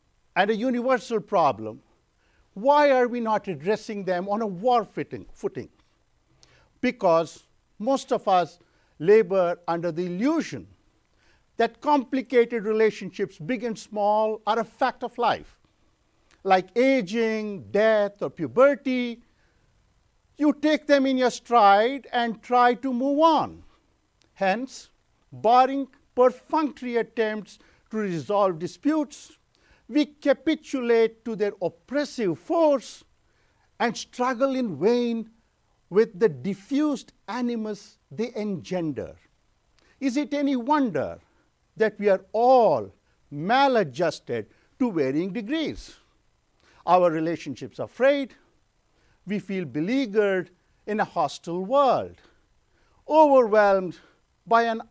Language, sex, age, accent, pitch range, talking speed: English, male, 50-69, Indian, 200-255 Hz, 105 wpm